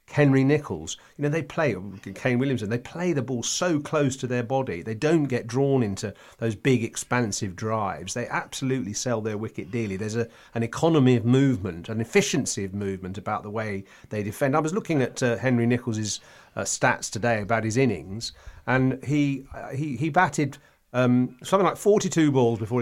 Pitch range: 110-140 Hz